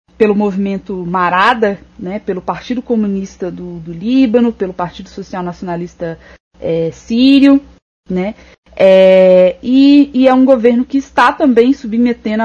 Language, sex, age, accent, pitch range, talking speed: Portuguese, female, 20-39, Brazilian, 185-235 Hz, 130 wpm